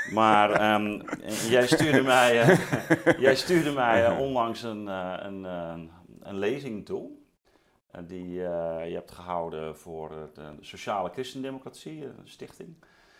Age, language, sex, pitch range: 40-59, Dutch, male, 95-125 Hz